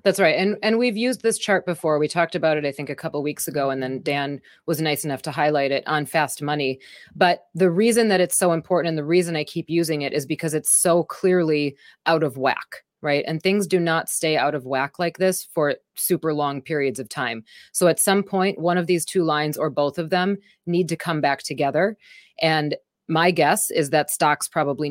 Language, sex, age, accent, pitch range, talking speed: English, female, 30-49, American, 150-180 Hz, 230 wpm